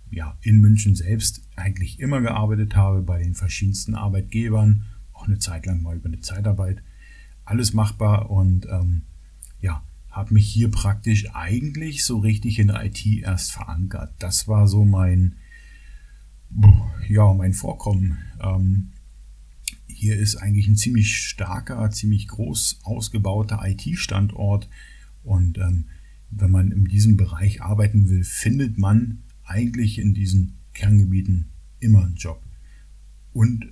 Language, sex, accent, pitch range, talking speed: German, male, German, 90-105 Hz, 130 wpm